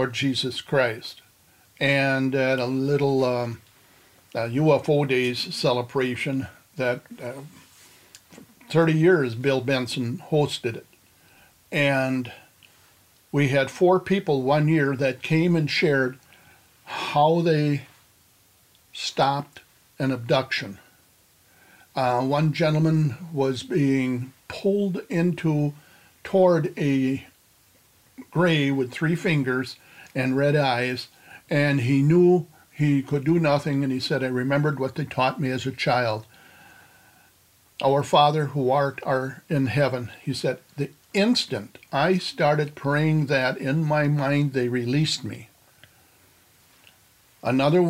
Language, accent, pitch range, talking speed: English, American, 130-155 Hz, 115 wpm